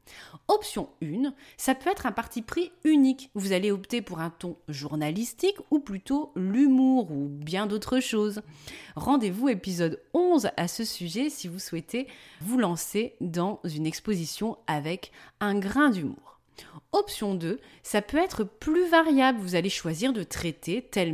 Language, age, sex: French, 30-49, female